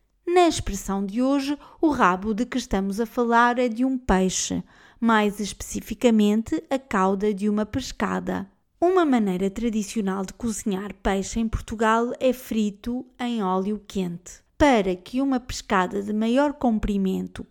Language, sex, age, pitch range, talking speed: Portuguese, female, 20-39, 195-240 Hz, 145 wpm